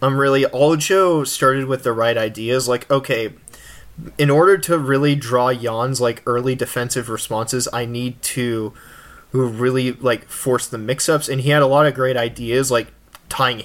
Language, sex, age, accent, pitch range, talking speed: English, male, 20-39, American, 120-145 Hz, 170 wpm